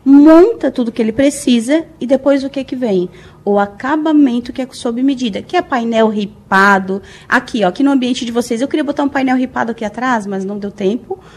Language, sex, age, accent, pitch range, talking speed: Portuguese, female, 20-39, Brazilian, 210-275 Hz, 210 wpm